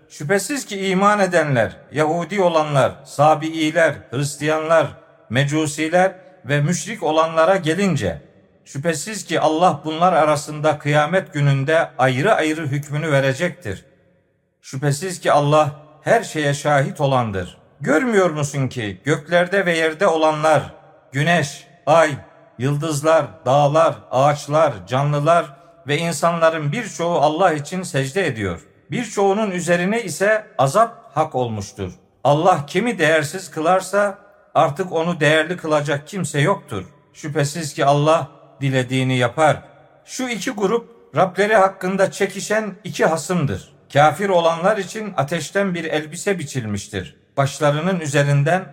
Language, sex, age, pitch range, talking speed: Turkish, male, 50-69, 145-185 Hz, 110 wpm